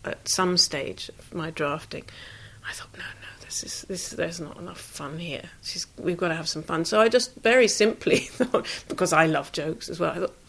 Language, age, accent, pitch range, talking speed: English, 40-59, British, 165-195 Hz, 225 wpm